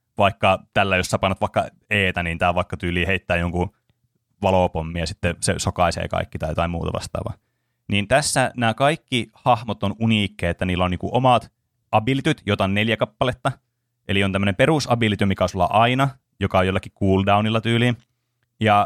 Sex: male